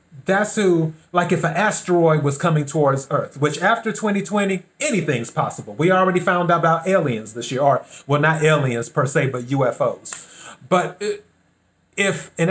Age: 30-49